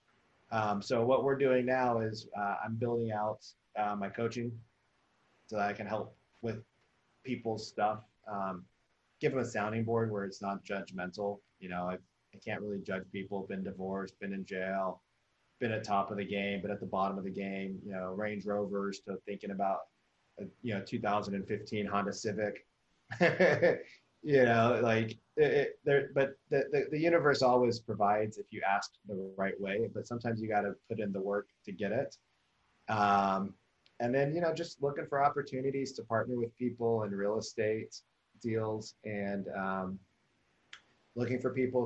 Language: English